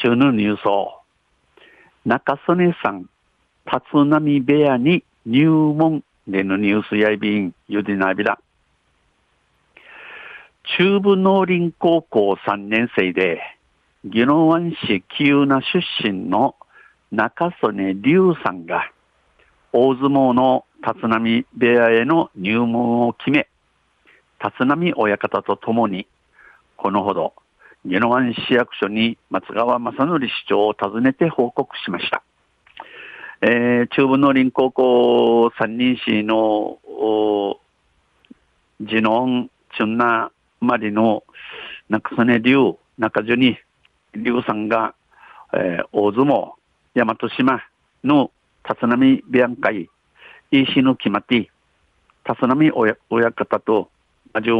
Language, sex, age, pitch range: Japanese, male, 60-79, 105-145 Hz